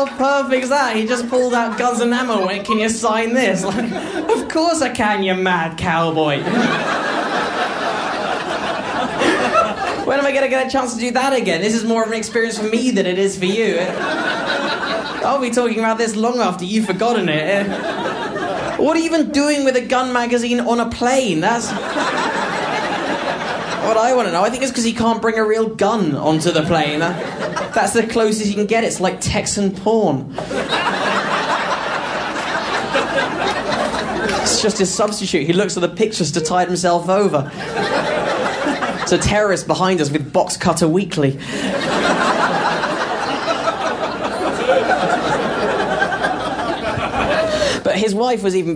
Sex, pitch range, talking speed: male, 175-240 Hz, 155 wpm